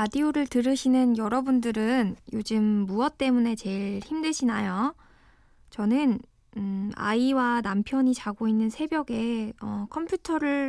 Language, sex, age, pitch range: Korean, female, 20-39, 215-270 Hz